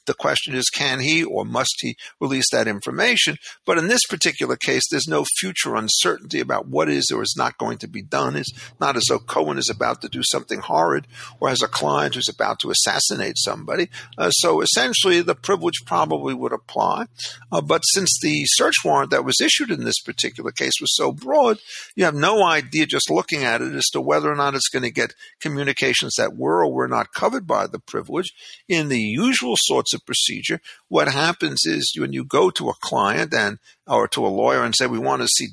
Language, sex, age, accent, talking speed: English, male, 50-69, American, 215 wpm